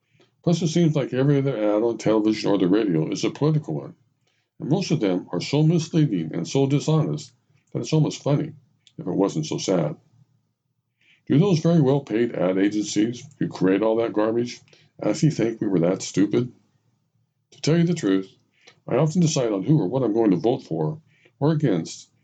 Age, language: 50-69, English